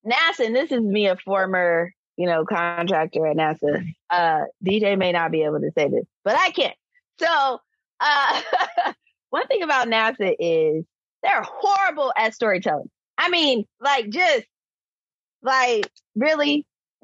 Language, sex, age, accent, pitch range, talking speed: English, female, 20-39, American, 185-270 Hz, 145 wpm